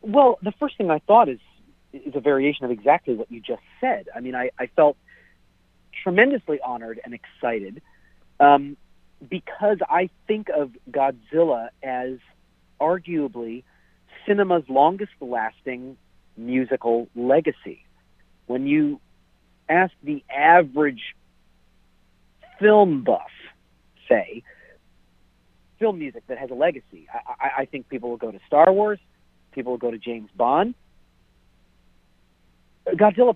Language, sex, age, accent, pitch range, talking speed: English, male, 40-59, American, 125-185 Hz, 120 wpm